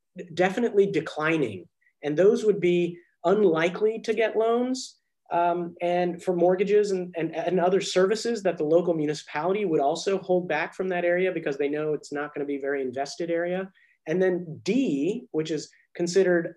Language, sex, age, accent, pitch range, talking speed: English, male, 30-49, American, 150-190 Hz, 165 wpm